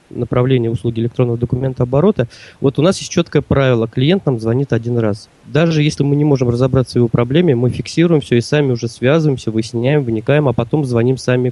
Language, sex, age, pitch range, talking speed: Russian, male, 20-39, 120-140 Hz, 200 wpm